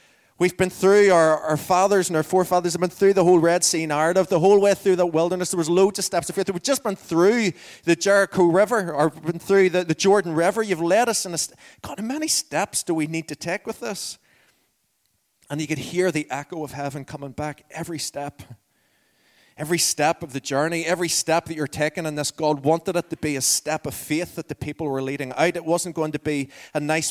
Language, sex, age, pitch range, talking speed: English, male, 30-49, 130-170 Hz, 235 wpm